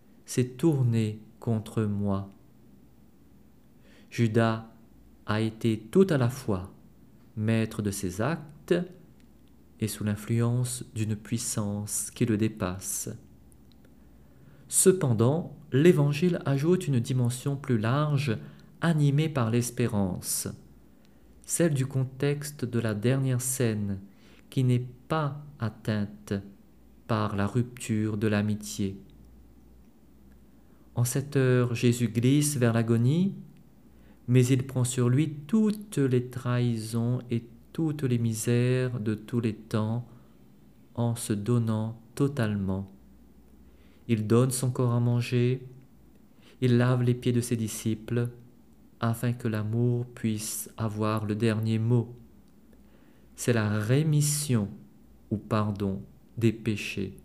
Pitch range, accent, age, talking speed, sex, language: 110-130 Hz, French, 50-69, 110 wpm, male, French